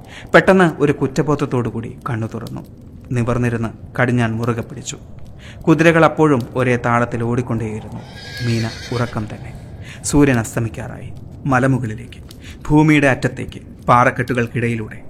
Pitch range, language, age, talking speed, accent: 115-135 Hz, Malayalam, 30-49, 90 wpm, native